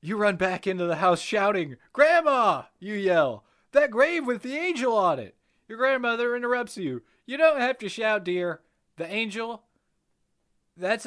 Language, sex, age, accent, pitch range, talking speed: English, male, 30-49, American, 160-250 Hz, 165 wpm